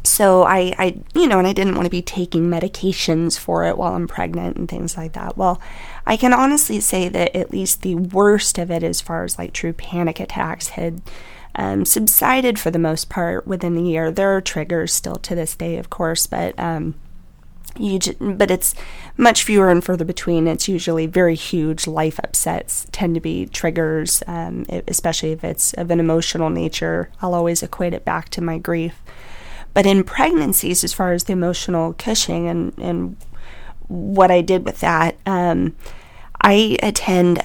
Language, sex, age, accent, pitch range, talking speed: English, female, 20-39, American, 165-185 Hz, 185 wpm